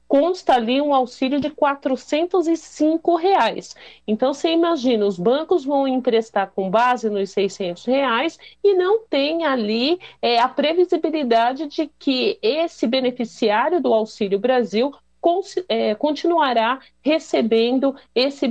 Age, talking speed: 50-69, 125 wpm